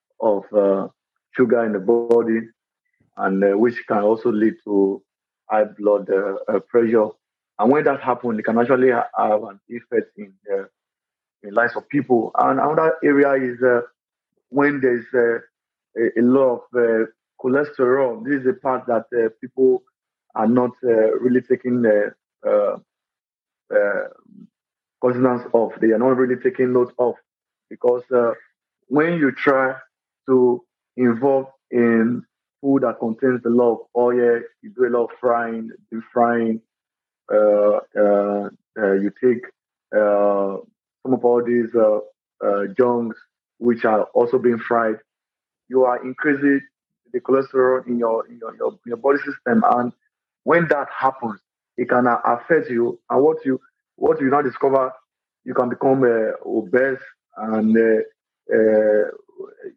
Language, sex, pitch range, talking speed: English, male, 115-135 Hz, 150 wpm